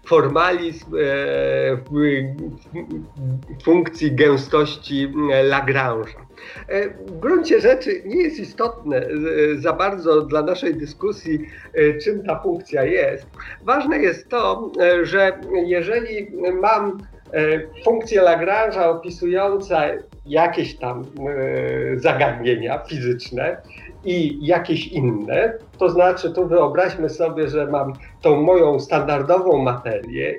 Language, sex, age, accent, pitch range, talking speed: Polish, male, 50-69, native, 145-190 Hz, 95 wpm